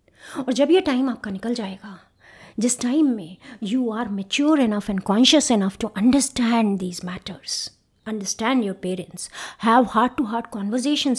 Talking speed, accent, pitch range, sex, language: 155 wpm, native, 185-255 Hz, female, Hindi